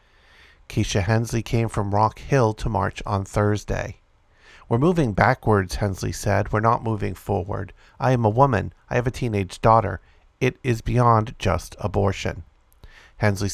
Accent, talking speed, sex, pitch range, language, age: American, 150 wpm, male, 100-120 Hz, English, 50-69